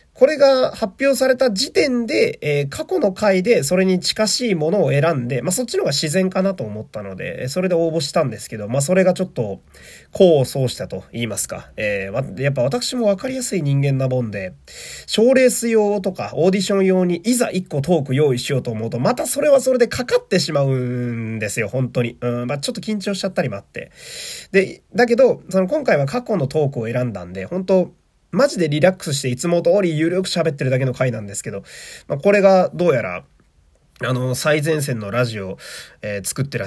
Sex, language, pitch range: male, Japanese, 125-200 Hz